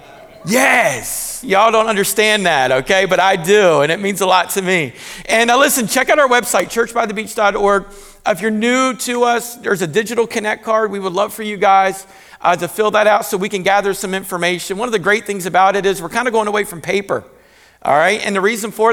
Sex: male